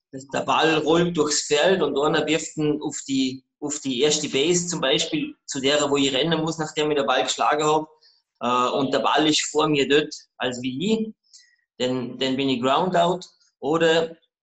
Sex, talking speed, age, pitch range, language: male, 190 wpm, 20-39, 140-175 Hz, German